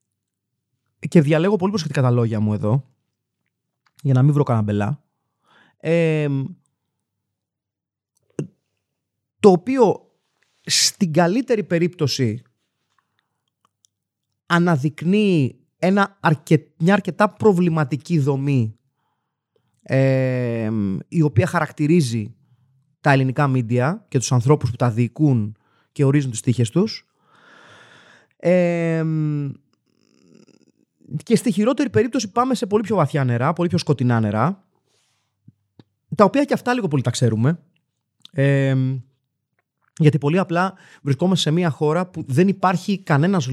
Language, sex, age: Greek, male, 30-49